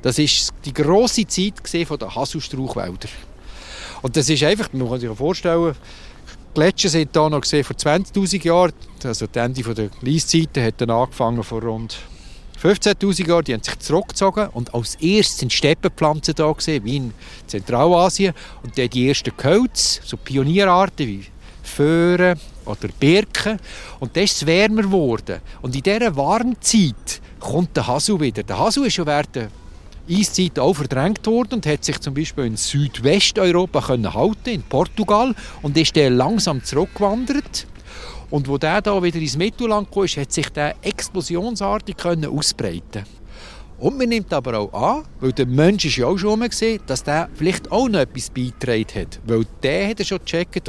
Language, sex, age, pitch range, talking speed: German, male, 50-69, 115-185 Hz, 160 wpm